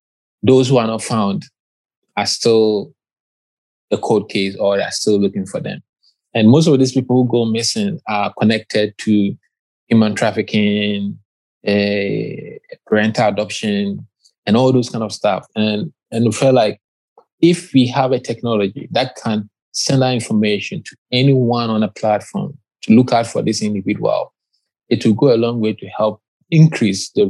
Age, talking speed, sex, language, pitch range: 20-39, 165 wpm, male, English, 105-125 Hz